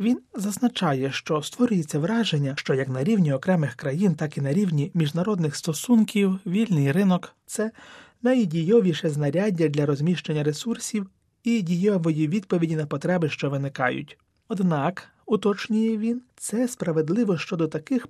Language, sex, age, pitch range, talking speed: Ukrainian, male, 30-49, 145-195 Hz, 135 wpm